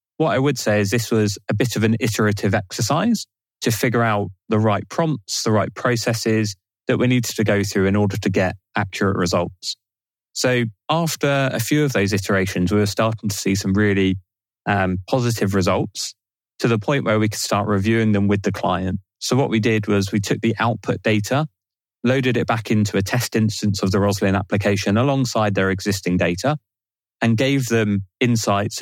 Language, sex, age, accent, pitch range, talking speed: English, male, 20-39, British, 100-115 Hz, 190 wpm